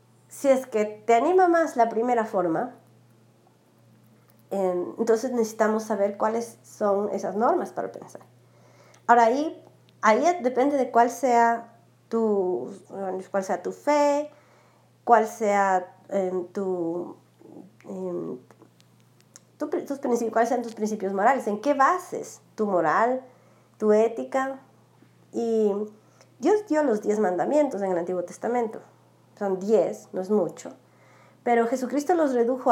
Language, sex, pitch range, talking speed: Spanish, female, 205-275 Hz, 110 wpm